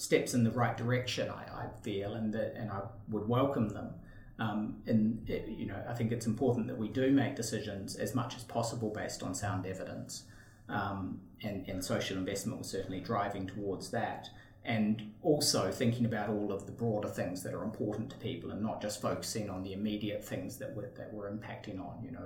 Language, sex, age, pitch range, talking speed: English, male, 30-49, 100-120 Hz, 210 wpm